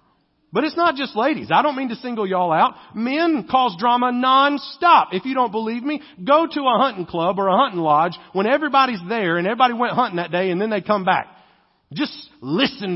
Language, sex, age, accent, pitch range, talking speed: English, male, 40-59, American, 175-250 Hz, 215 wpm